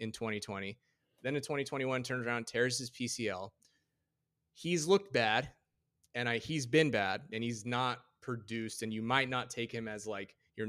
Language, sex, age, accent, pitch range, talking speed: English, male, 30-49, American, 115-145 Hz, 175 wpm